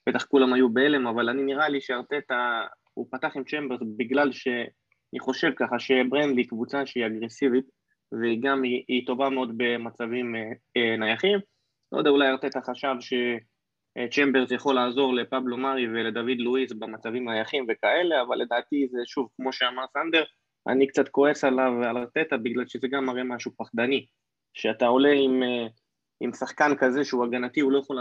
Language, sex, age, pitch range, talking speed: Hebrew, male, 20-39, 120-140 Hz, 165 wpm